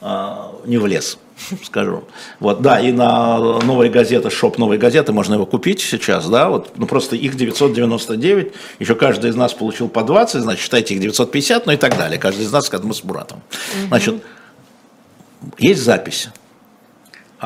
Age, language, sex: 60-79, Russian, male